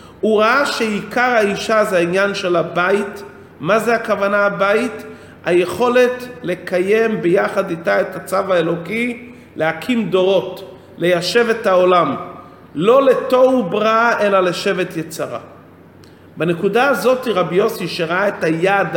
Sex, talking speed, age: male, 115 wpm, 40-59